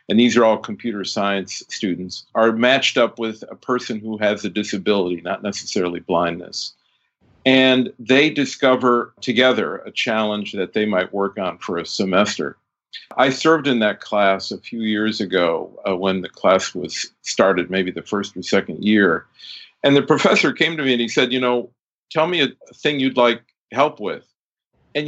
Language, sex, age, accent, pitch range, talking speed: English, male, 50-69, American, 100-130 Hz, 180 wpm